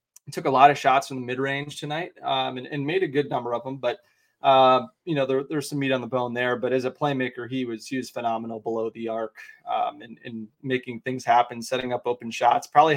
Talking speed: 260 wpm